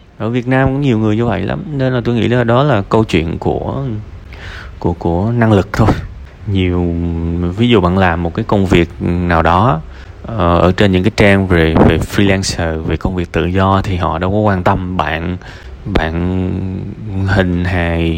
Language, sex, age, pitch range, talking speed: Vietnamese, male, 20-39, 90-110 Hz, 195 wpm